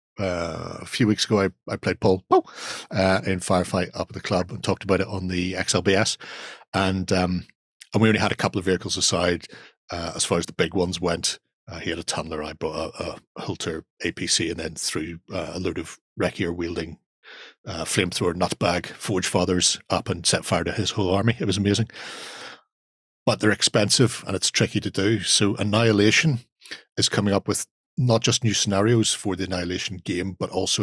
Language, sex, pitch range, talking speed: English, male, 90-105 Hz, 200 wpm